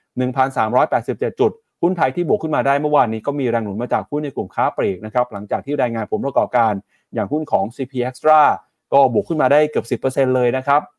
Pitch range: 115-150 Hz